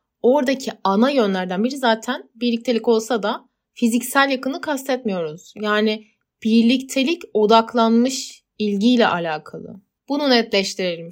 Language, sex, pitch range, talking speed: Turkish, female, 195-240 Hz, 95 wpm